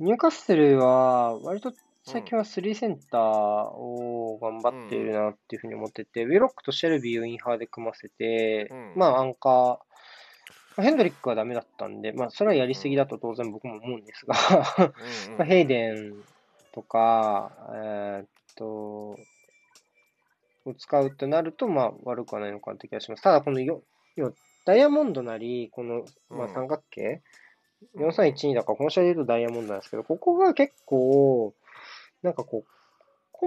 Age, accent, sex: 20-39, native, male